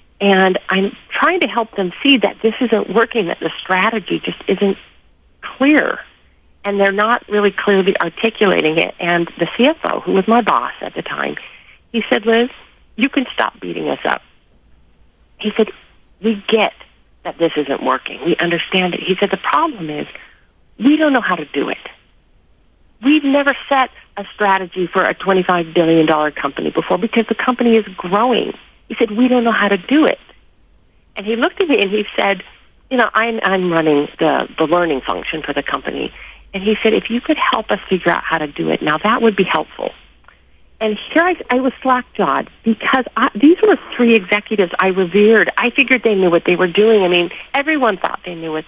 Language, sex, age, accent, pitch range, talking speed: English, female, 50-69, American, 180-245 Hz, 195 wpm